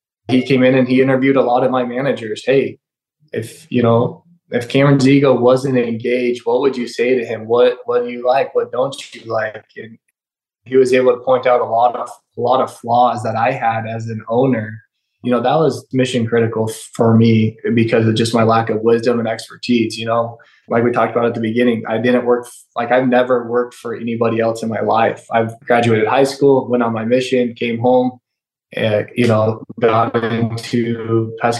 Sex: male